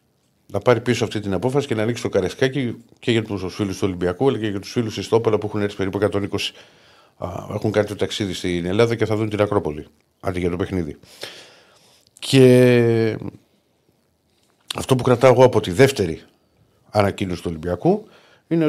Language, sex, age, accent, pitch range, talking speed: Greek, male, 50-69, native, 95-120 Hz, 185 wpm